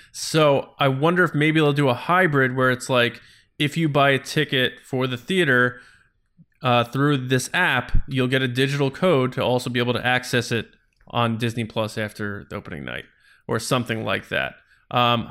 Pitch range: 120-145 Hz